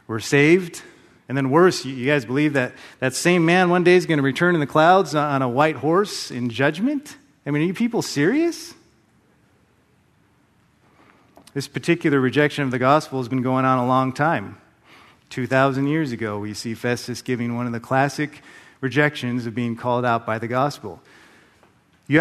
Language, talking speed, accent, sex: English, 180 wpm, American, male